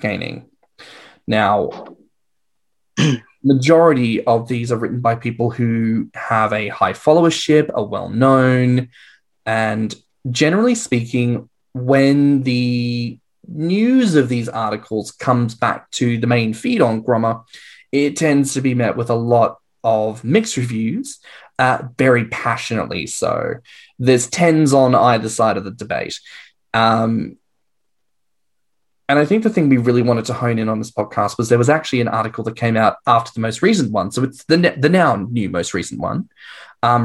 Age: 10-29